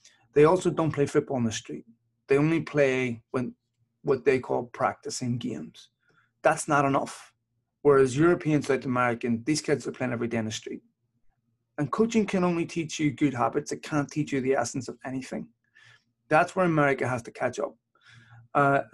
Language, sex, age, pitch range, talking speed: English, male, 30-49, 120-150 Hz, 180 wpm